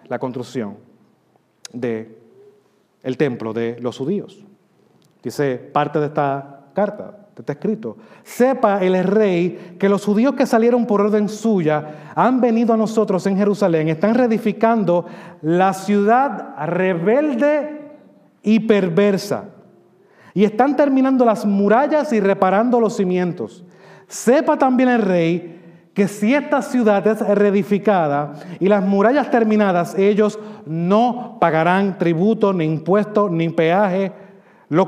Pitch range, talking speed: 160-210 Hz, 120 wpm